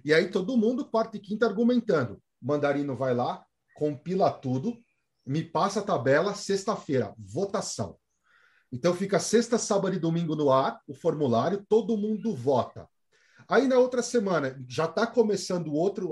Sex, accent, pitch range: male, Brazilian, 135-200 Hz